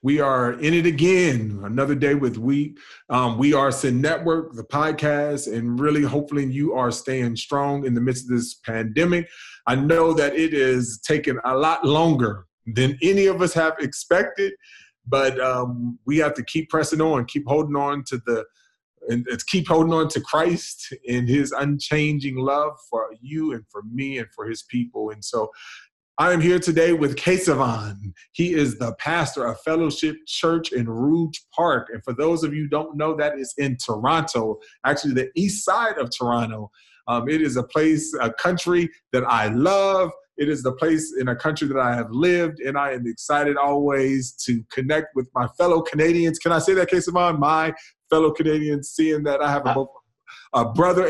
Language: English